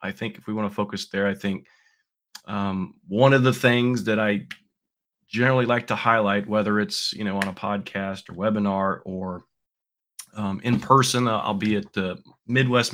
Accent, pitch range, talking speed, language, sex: American, 105-125 Hz, 180 wpm, English, male